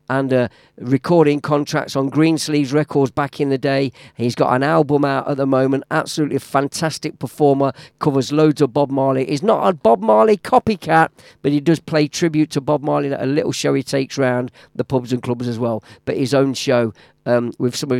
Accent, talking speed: British, 210 wpm